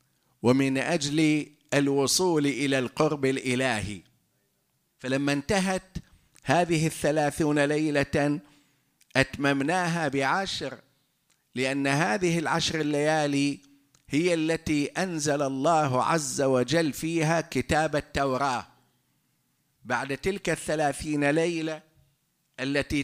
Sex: male